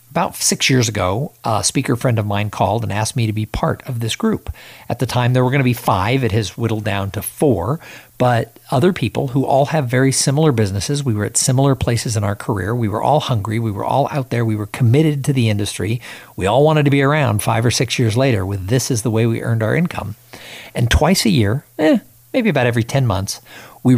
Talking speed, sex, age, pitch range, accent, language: 245 wpm, male, 50-69, 110-135 Hz, American, English